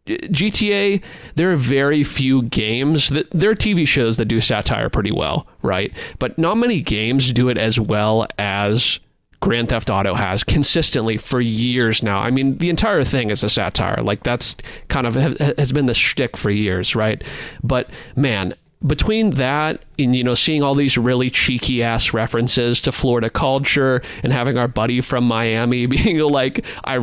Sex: male